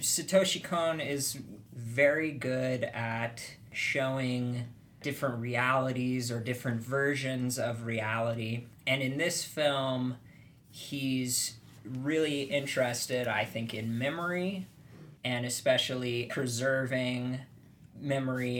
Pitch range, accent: 115-130 Hz, American